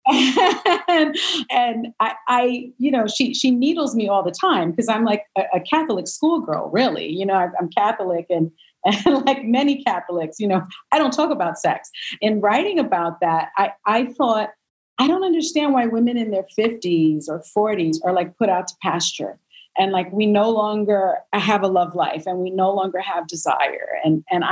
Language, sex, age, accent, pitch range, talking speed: English, female, 40-59, American, 190-275 Hz, 190 wpm